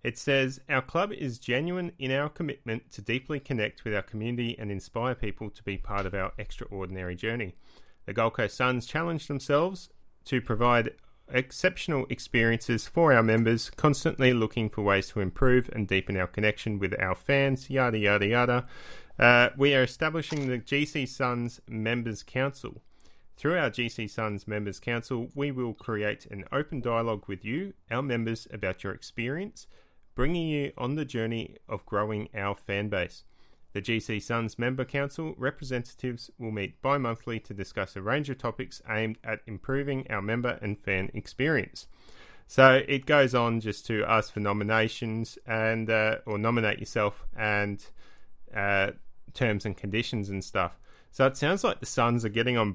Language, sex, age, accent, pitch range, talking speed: English, male, 30-49, Australian, 105-130 Hz, 165 wpm